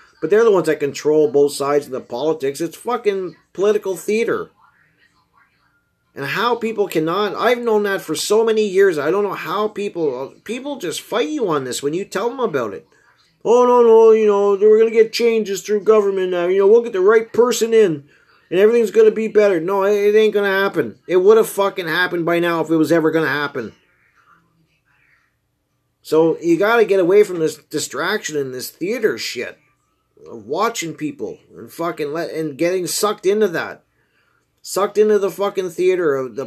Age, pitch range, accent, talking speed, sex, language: 40-59, 155-220 Hz, American, 190 wpm, male, English